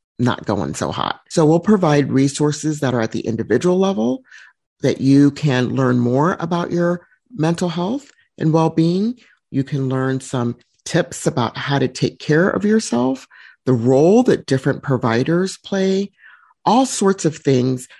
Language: English